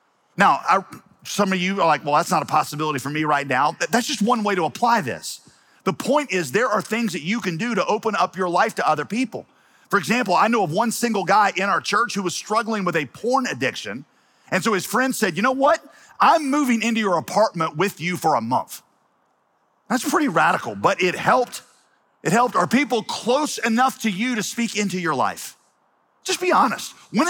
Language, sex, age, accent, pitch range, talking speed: English, male, 40-59, American, 180-235 Hz, 220 wpm